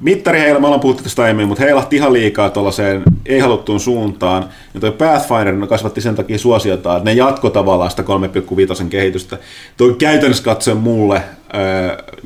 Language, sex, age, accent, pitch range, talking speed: Finnish, male, 30-49, native, 100-135 Hz, 155 wpm